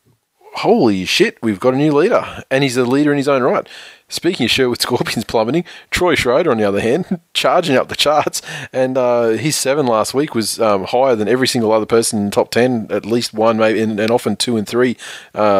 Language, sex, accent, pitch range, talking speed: English, male, Australian, 105-125 Hz, 225 wpm